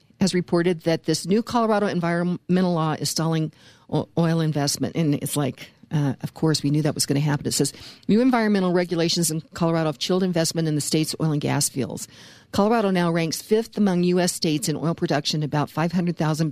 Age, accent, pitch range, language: 50-69, American, 150-175 Hz, English